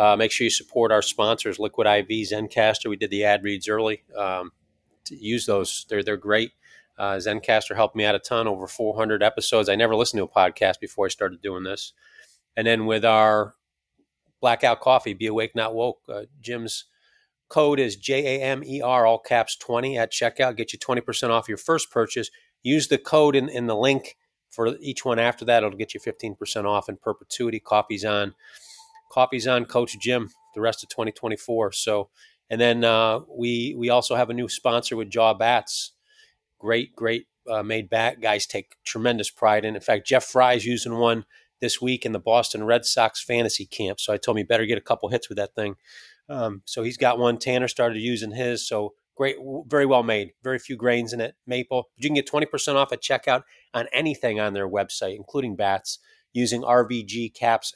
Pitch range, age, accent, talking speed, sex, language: 110-125 Hz, 30-49, American, 195 wpm, male, English